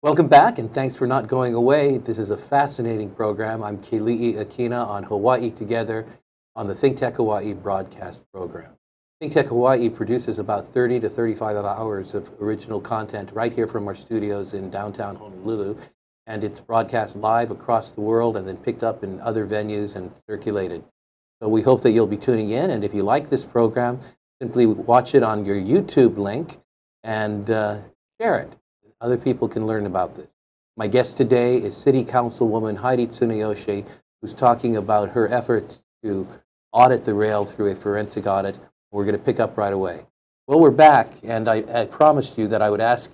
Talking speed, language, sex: 185 wpm, English, male